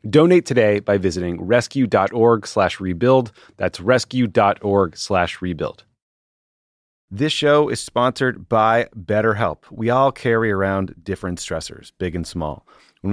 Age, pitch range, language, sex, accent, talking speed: 30-49, 90-120 Hz, English, male, American, 125 wpm